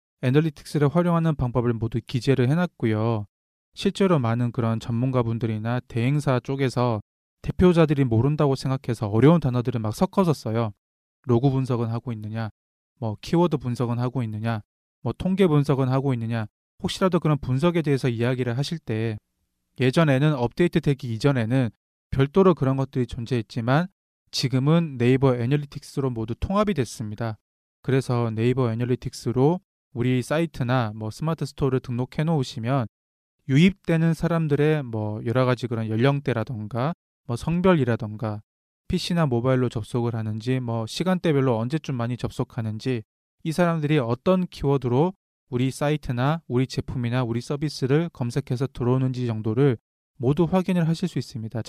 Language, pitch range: English, 115-155 Hz